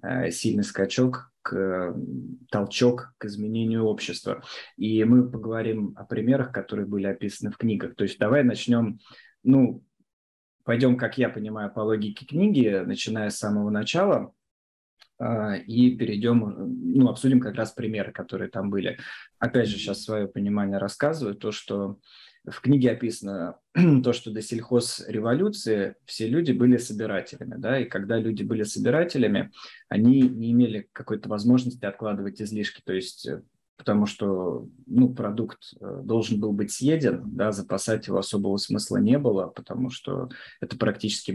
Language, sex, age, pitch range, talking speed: Russian, male, 20-39, 105-125 Hz, 140 wpm